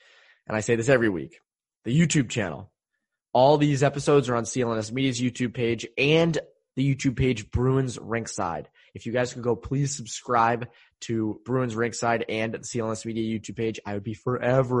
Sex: male